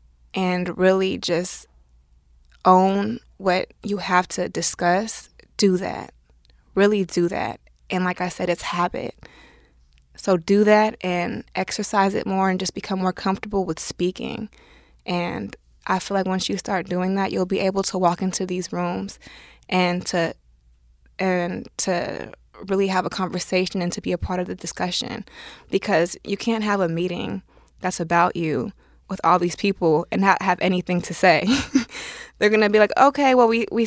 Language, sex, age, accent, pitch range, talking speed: English, female, 20-39, American, 175-200 Hz, 170 wpm